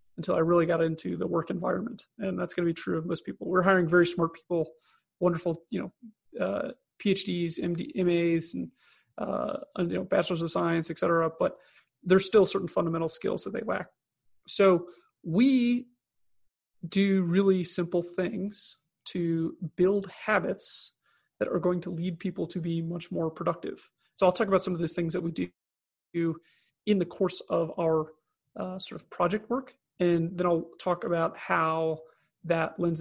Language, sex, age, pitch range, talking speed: English, male, 30-49, 165-185 Hz, 175 wpm